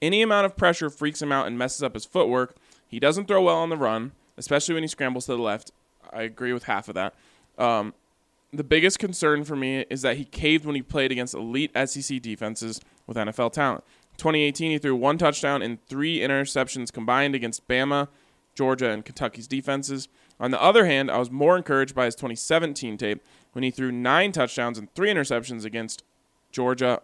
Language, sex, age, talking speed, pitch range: English, male, 20-39, 195 wpm, 115-150 Hz